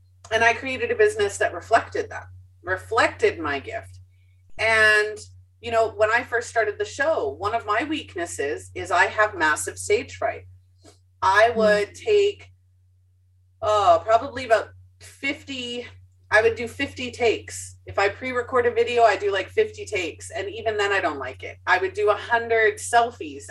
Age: 30-49